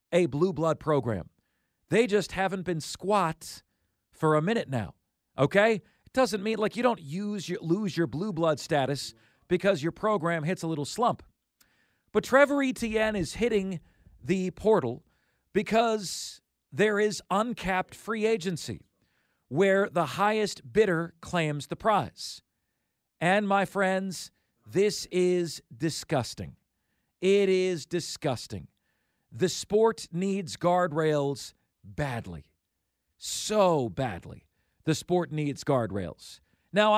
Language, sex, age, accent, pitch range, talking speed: English, male, 40-59, American, 150-205 Hz, 120 wpm